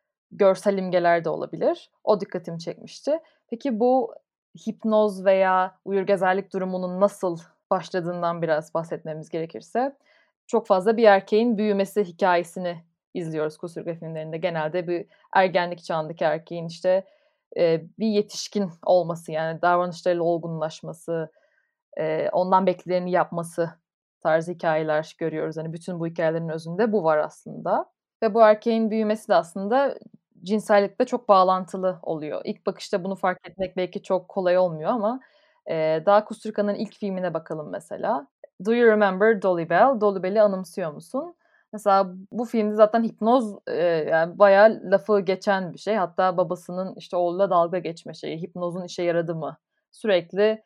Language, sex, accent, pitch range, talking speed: Turkish, female, native, 170-215 Hz, 130 wpm